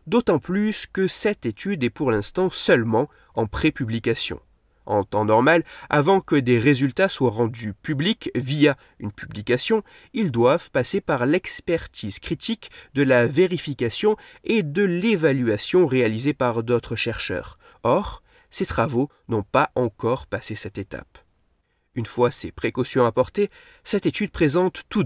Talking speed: 140 wpm